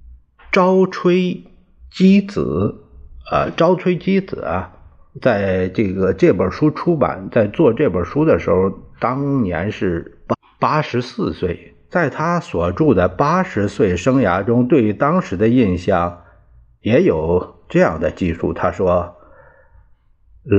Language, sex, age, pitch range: Chinese, male, 50-69, 85-140 Hz